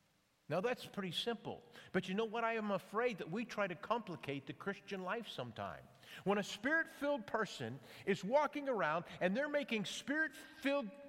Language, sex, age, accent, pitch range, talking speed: English, male, 50-69, American, 175-230 Hz, 170 wpm